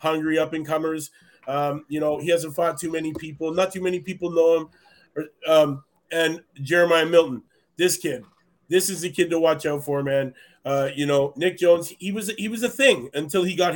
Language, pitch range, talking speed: English, 150-180 Hz, 200 wpm